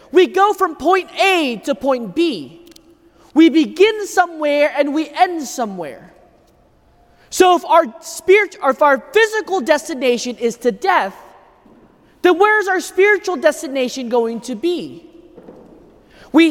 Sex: male